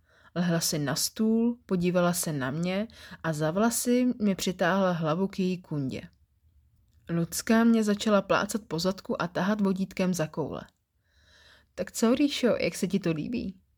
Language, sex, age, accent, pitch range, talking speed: Czech, female, 20-39, native, 155-205 Hz, 155 wpm